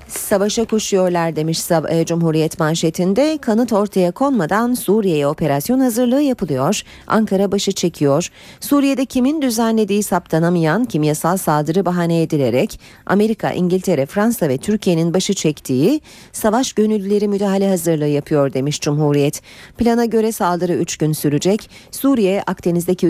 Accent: native